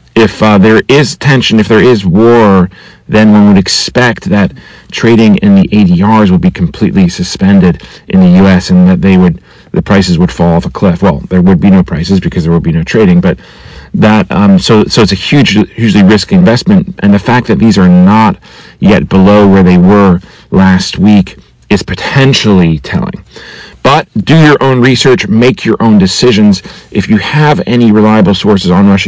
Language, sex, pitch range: English, male, 95-125 Hz